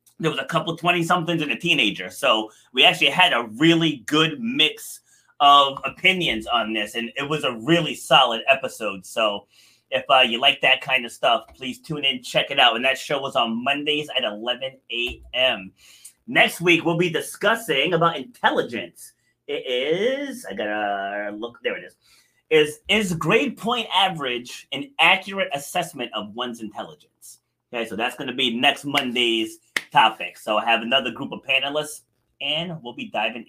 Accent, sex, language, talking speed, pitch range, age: American, male, English, 175 wpm, 125-170 Hz, 30-49